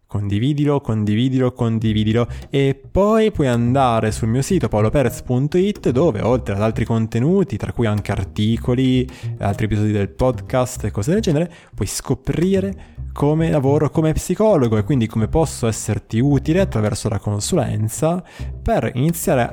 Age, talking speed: 20-39, 140 wpm